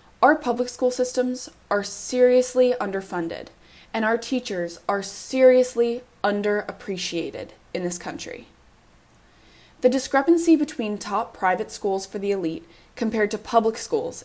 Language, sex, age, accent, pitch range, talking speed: English, female, 10-29, American, 175-235 Hz, 120 wpm